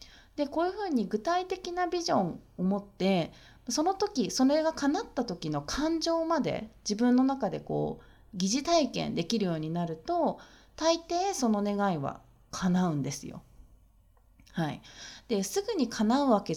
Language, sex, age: Japanese, female, 30-49